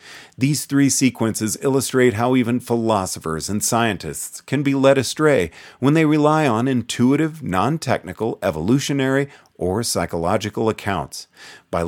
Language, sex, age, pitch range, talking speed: English, male, 40-59, 100-135 Hz, 120 wpm